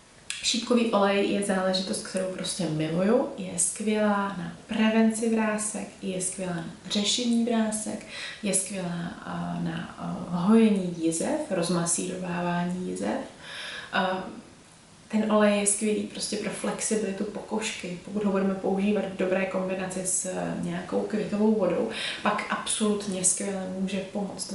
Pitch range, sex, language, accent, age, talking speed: 190-225 Hz, female, Czech, native, 20-39, 115 wpm